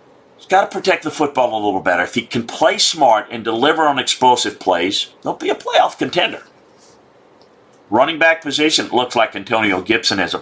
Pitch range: 100-145 Hz